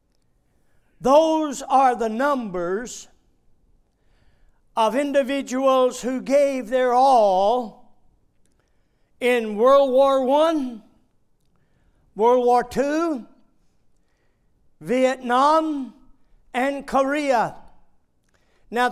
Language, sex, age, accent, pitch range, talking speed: English, male, 60-79, American, 235-285 Hz, 65 wpm